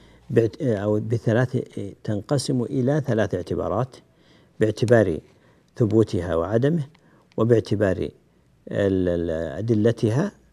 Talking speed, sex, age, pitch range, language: 65 wpm, male, 60-79, 95-115 Hz, Arabic